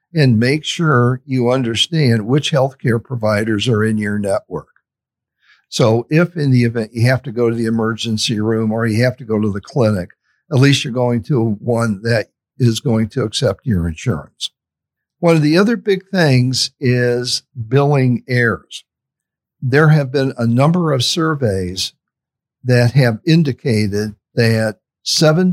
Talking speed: 155 wpm